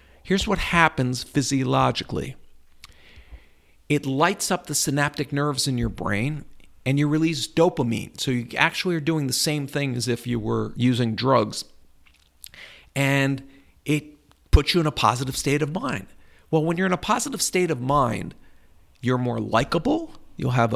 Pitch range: 115-170 Hz